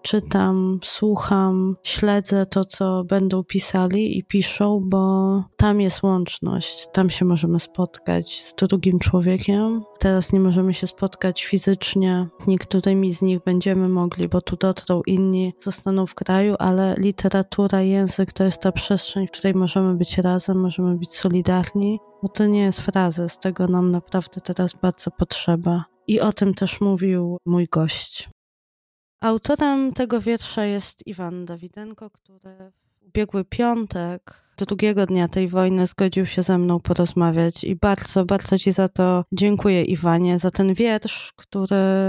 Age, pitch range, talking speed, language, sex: 20-39, 180-195 Hz, 150 wpm, Polish, female